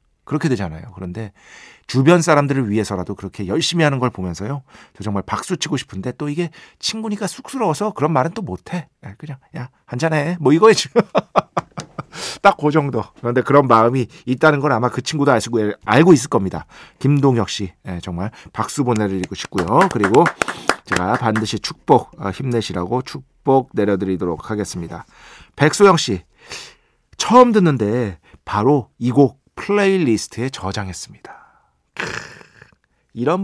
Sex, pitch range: male, 105-155 Hz